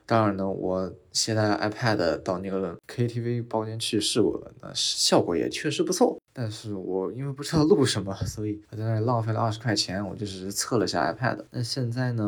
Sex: male